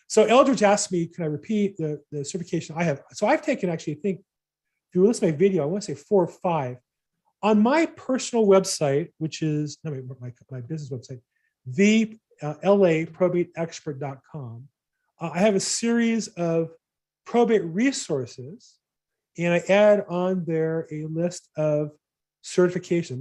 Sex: male